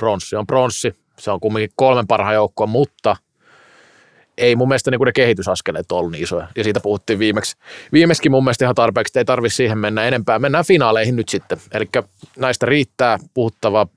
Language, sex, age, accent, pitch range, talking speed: Finnish, male, 30-49, native, 105-140 Hz, 180 wpm